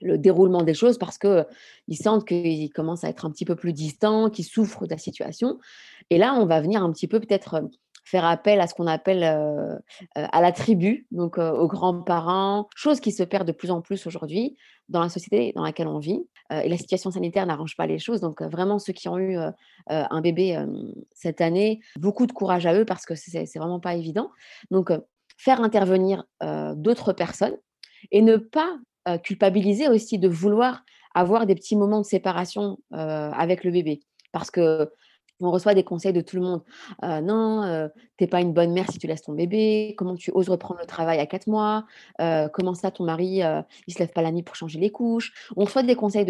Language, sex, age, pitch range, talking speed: French, female, 30-49, 170-210 Hz, 225 wpm